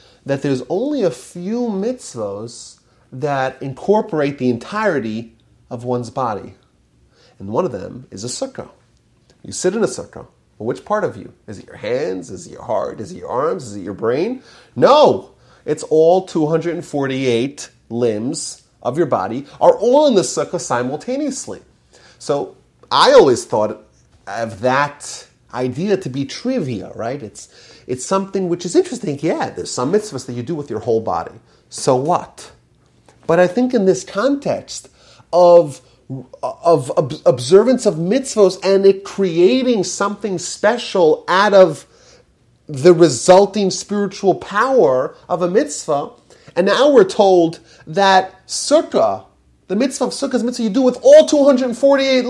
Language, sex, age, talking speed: English, male, 30-49, 150 wpm